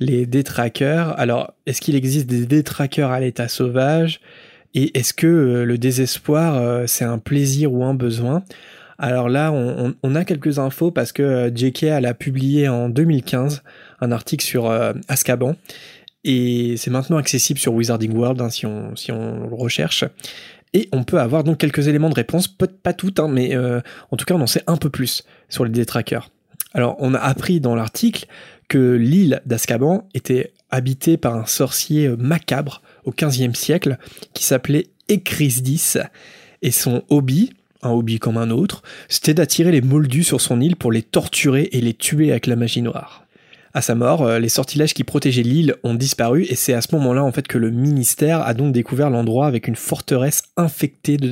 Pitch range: 120-155 Hz